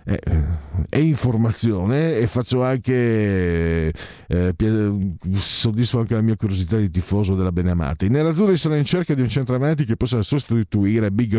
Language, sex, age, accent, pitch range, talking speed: Italian, male, 50-69, native, 90-130 Hz, 165 wpm